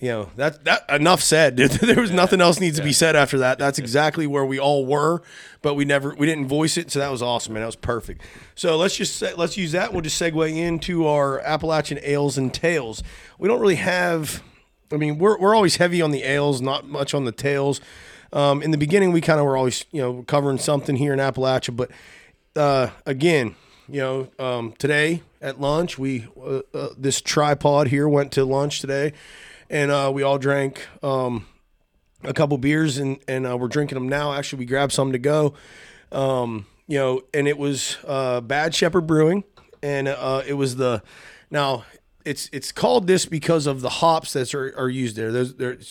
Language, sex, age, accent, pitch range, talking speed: English, male, 30-49, American, 130-155 Hz, 205 wpm